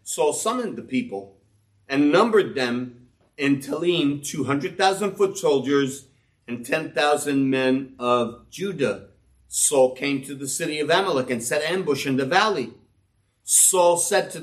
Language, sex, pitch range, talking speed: English, male, 130-190 Hz, 135 wpm